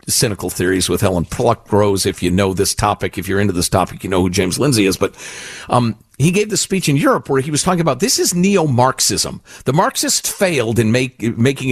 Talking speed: 225 wpm